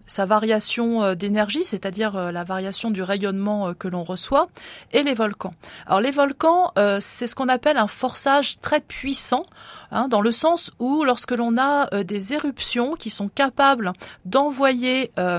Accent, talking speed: French, 150 wpm